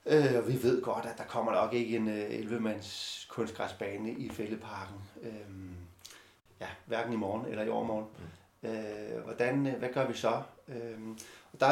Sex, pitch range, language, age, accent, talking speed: male, 110-135 Hz, Danish, 30-49, native, 140 wpm